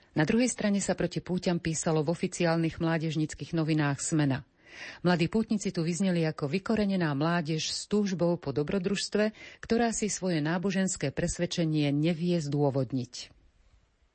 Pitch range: 145-180 Hz